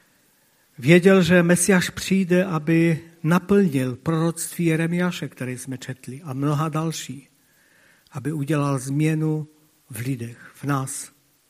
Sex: male